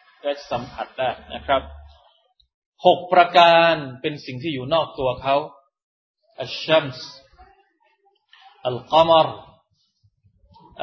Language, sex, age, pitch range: Thai, male, 20-39, 125-170 Hz